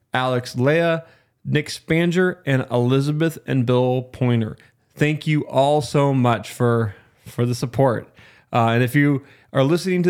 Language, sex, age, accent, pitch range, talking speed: English, male, 20-39, American, 120-145 Hz, 150 wpm